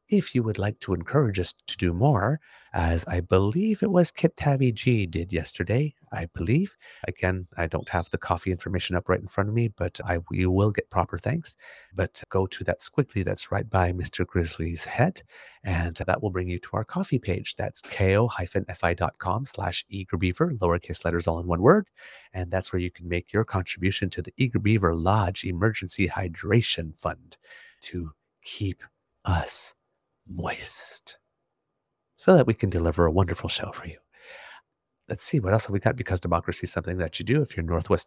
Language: English